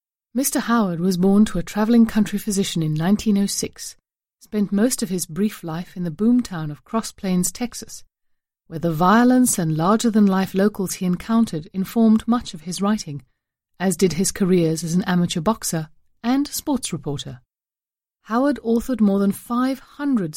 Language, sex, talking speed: English, female, 155 wpm